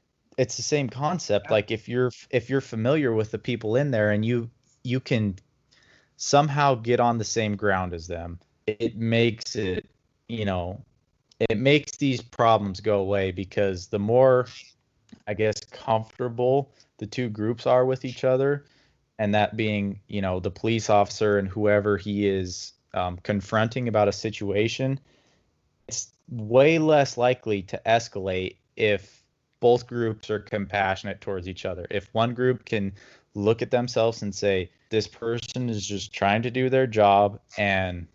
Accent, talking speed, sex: American, 160 wpm, male